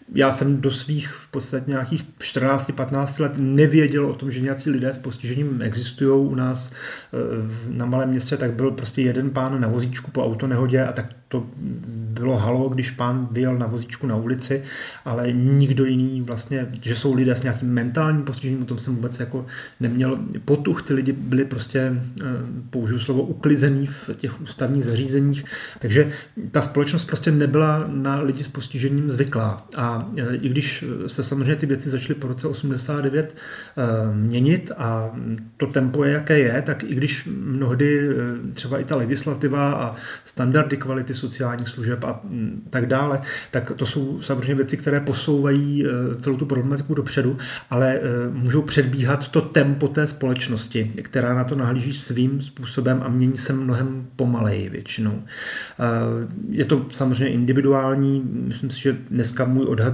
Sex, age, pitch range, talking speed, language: male, 30-49, 125-140 Hz, 155 wpm, Czech